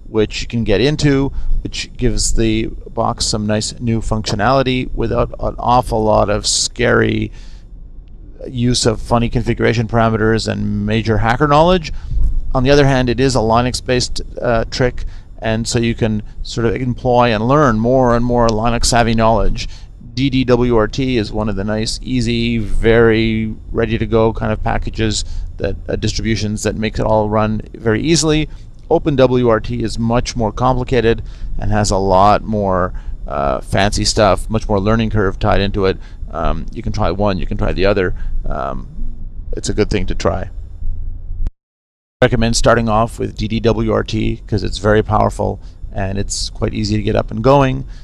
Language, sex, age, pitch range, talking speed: English, male, 40-59, 100-115 Hz, 165 wpm